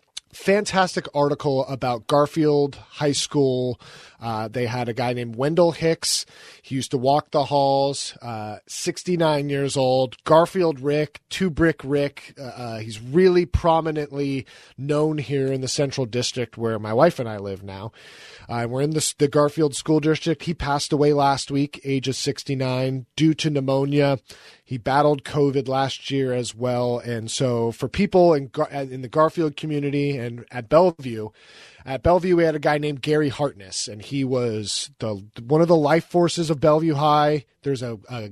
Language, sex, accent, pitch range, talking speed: English, male, American, 125-160 Hz, 170 wpm